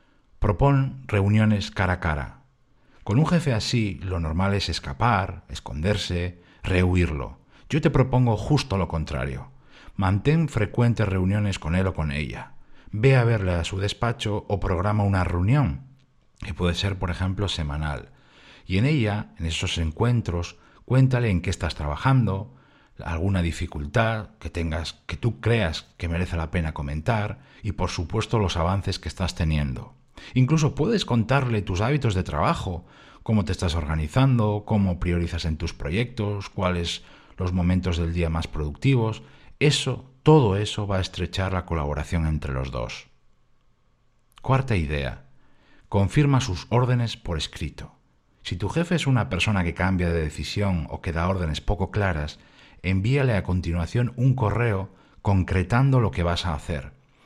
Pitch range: 85-115 Hz